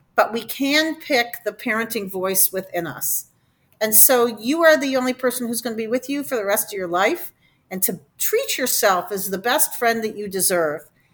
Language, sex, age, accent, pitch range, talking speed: English, female, 50-69, American, 200-275 Hz, 210 wpm